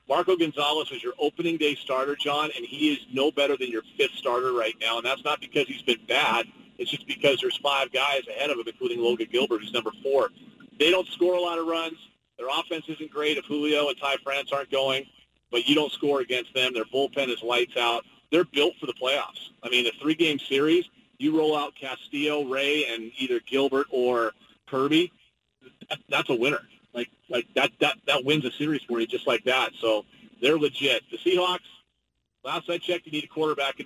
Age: 40-59